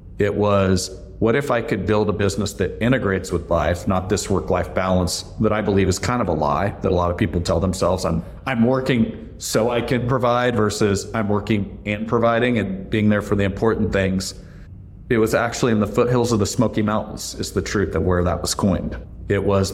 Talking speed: 215 wpm